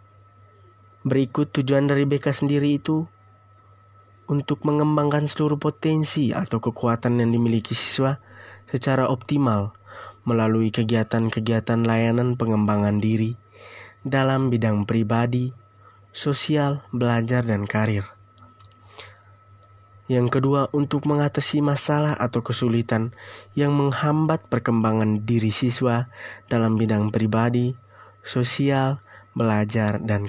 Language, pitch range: Indonesian, 100-130 Hz